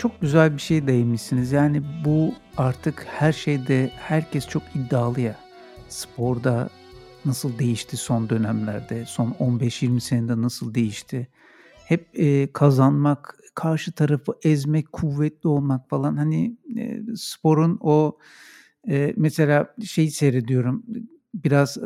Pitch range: 130-180 Hz